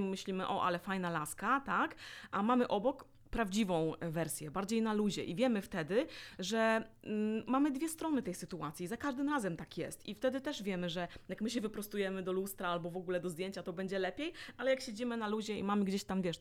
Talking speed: 210 wpm